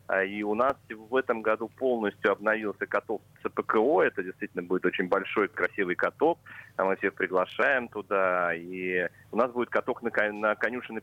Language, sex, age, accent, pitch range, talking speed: Russian, male, 30-49, native, 90-105 Hz, 150 wpm